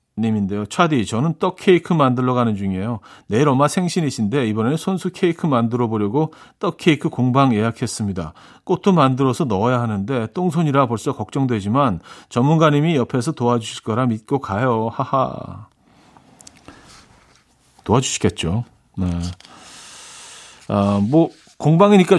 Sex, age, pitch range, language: male, 40-59, 110-165 Hz, Korean